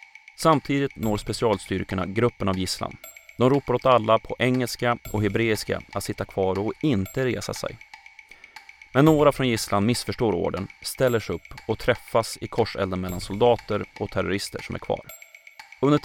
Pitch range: 100-125 Hz